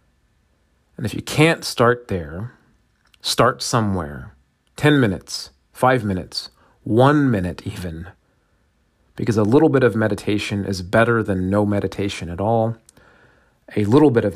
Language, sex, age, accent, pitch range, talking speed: English, male, 30-49, American, 85-115 Hz, 135 wpm